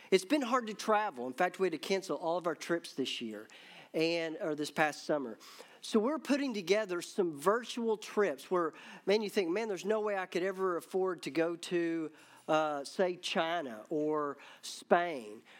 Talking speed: 190 wpm